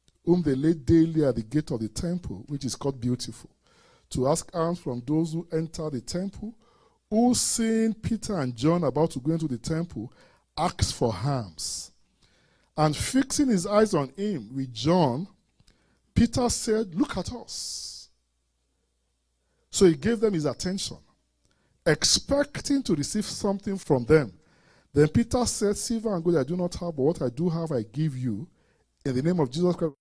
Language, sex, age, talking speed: English, male, 40-59, 175 wpm